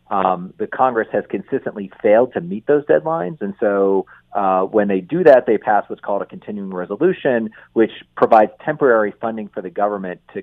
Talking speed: 185 wpm